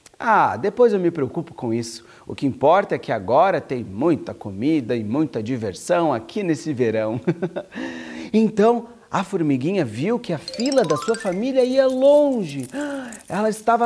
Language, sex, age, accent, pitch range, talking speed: Portuguese, male, 40-59, Brazilian, 145-230 Hz, 155 wpm